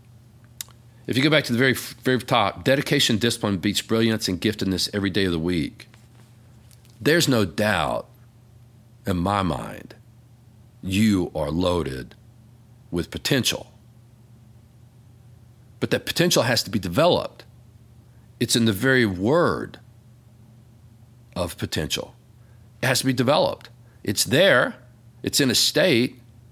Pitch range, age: 110-120 Hz, 50-69